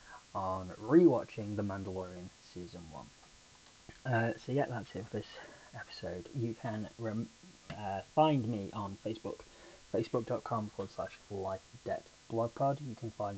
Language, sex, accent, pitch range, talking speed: English, male, British, 100-125 Hz, 145 wpm